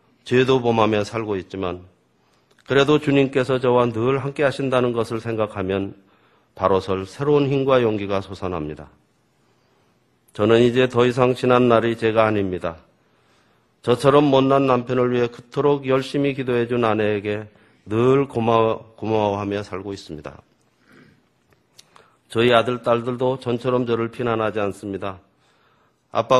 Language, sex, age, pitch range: Korean, male, 40-59, 105-130 Hz